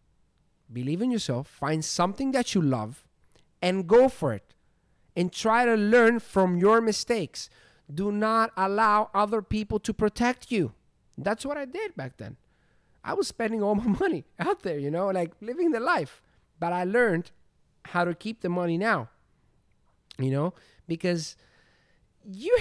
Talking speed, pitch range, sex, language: 160 wpm, 150-230 Hz, male, English